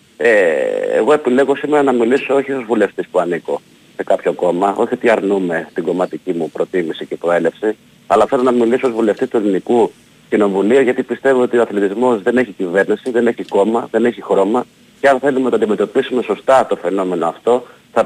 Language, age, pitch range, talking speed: Greek, 40-59, 115-140 Hz, 190 wpm